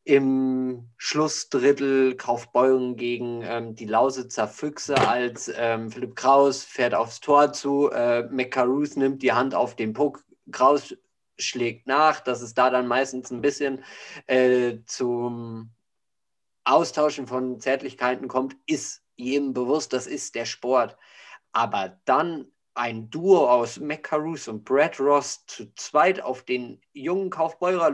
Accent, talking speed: German, 135 wpm